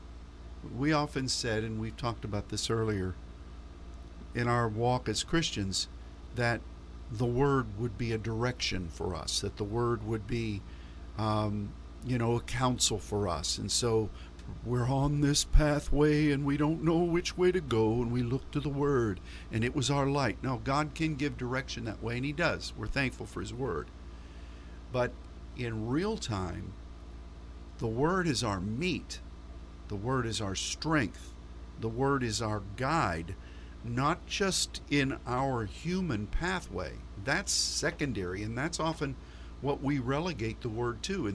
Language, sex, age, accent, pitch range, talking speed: English, male, 50-69, American, 90-130 Hz, 165 wpm